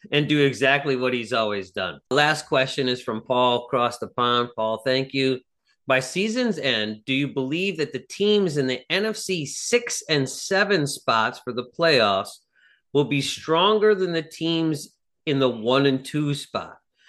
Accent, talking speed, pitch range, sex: American, 170 wpm, 125-180 Hz, male